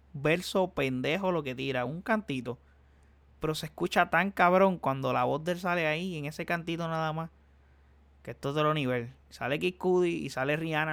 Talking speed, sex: 190 wpm, male